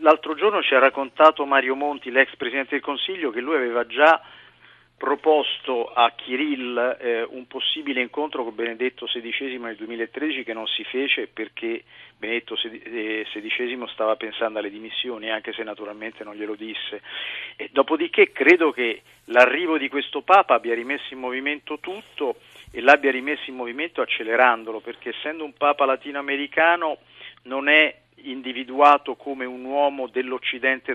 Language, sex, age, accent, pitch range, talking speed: Italian, male, 40-59, native, 120-145 Hz, 145 wpm